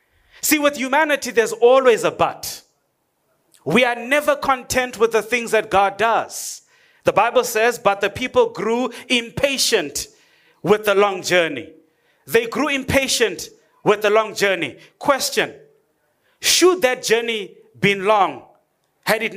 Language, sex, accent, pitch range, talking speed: English, male, South African, 195-270 Hz, 135 wpm